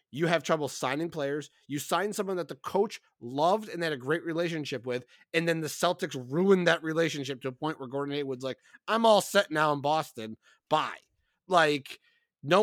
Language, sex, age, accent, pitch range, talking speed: English, male, 30-49, American, 135-170 Hz, 195 wpm